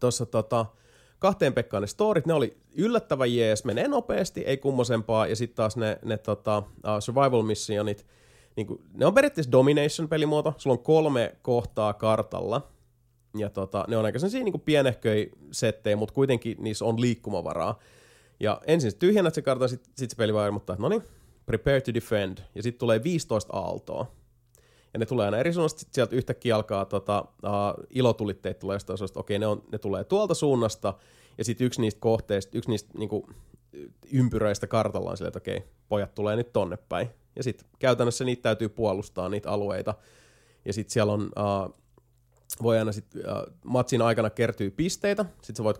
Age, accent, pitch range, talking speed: 30-49, native, 105-125 Hz, 175 wpm